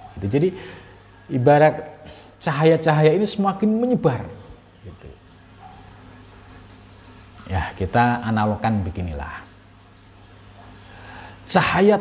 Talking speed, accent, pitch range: 55 wpm, native, 100-140 Hz